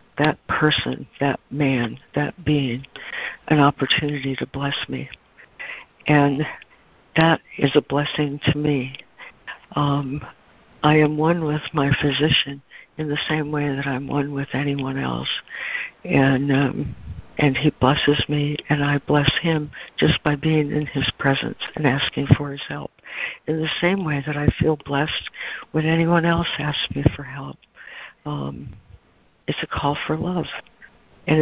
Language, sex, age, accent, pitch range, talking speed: English, female, 60-79, American, 140-155 Hz, 145 wpm